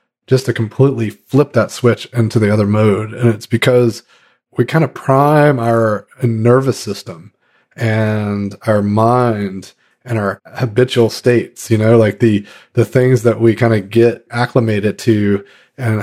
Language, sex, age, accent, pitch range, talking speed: English, male, 30-49, American, 105-120 Hz, 155 wpm